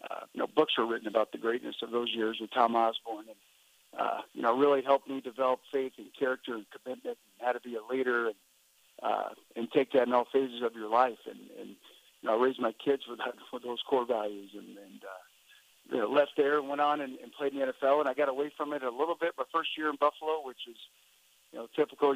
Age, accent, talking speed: 50-69, American, 250 wpm